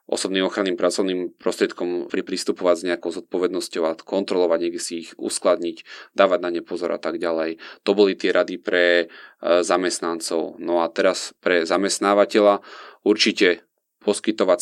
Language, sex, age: Slovak, male, 30-49